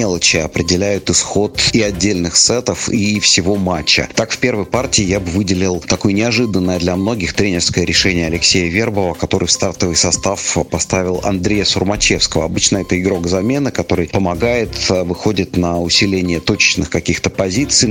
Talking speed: 145 wpm